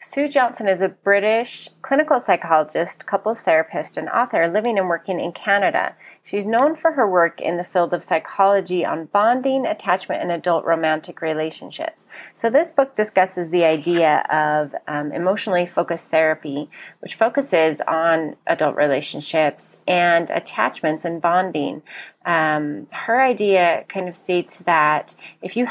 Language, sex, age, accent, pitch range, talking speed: English, female, 30-49, American, 165-200 Hz, 145 wpm